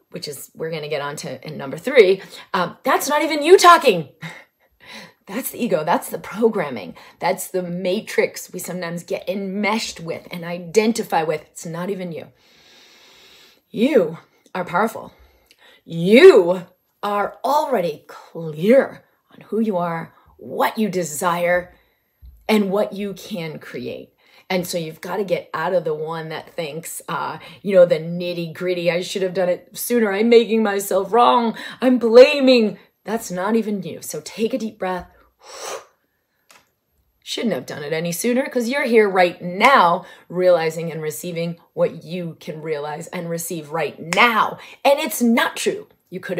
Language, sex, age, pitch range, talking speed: English, female, 30-49, 175-245 Hz, 160 wpm